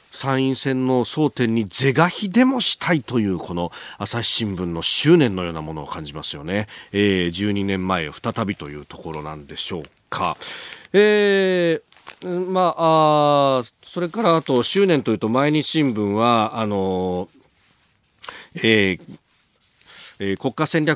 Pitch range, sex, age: 100-140 Hz, male, 40-59